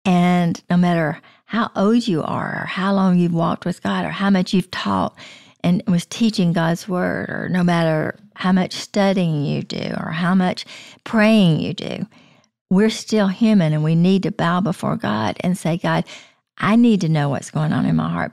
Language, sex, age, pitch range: English, female, 50-69, 175-215 Hz